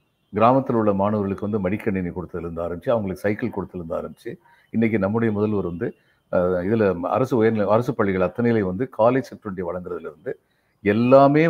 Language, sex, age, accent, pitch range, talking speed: Tamil, male, 50-69, native, 110-170 Hz, 150 wpm